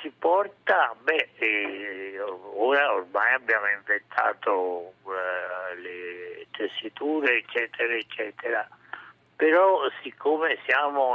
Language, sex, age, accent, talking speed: Italian, male, 60-79, native, 75 wpm